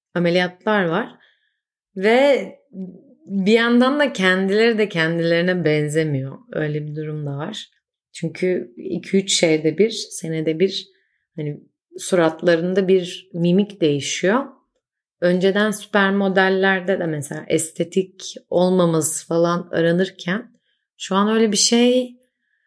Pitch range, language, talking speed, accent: 160-205 Hz, Turkish, 105 wpm, native